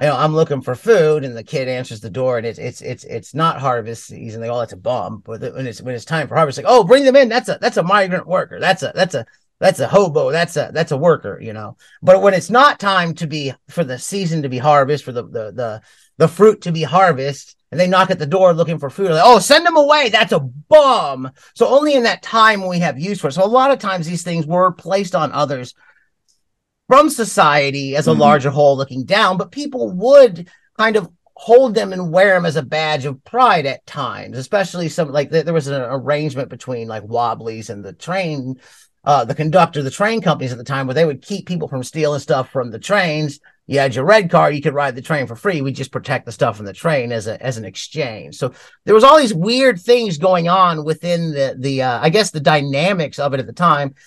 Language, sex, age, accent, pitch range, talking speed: English, male, 30-49, American, 135-190 Hz, 245 wpm